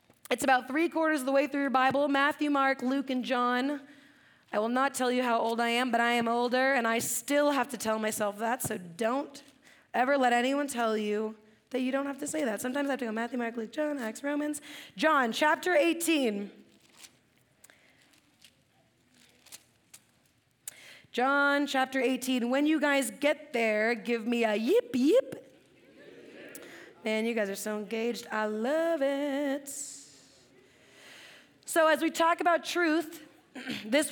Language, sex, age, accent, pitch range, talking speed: English, female, 20-39, American, 250-310 Hz, 160 wpm